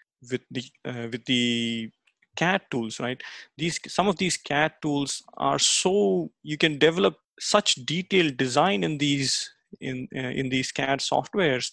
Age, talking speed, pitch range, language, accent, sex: 30-49, 155 wpm, 130-165 Hz, English, Indian, male